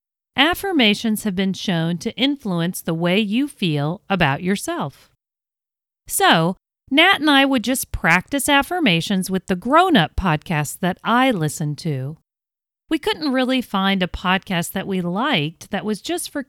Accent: American